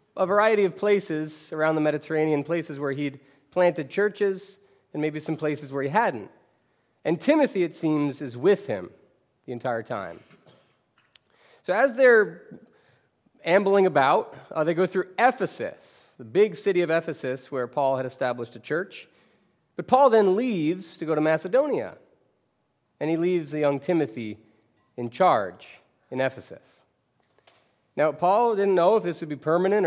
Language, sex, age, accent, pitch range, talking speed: English, male, 30-49, American, 125-180 Hz, 155 wpm